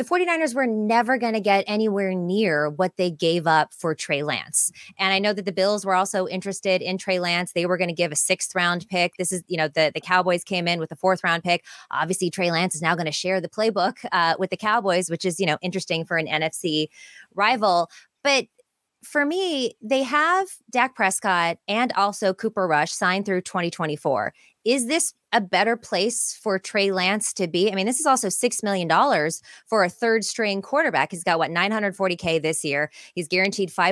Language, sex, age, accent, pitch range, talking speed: English, female, 20-39, American, 170-210 Hz, 210 wpm